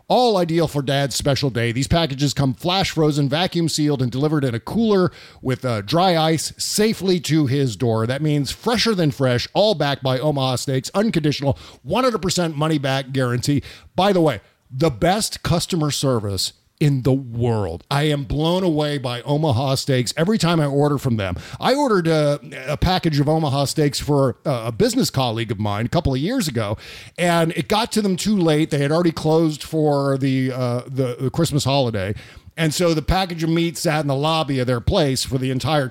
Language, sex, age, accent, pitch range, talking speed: English, male, 40-59, American, 130-175 Hz, 190 wpm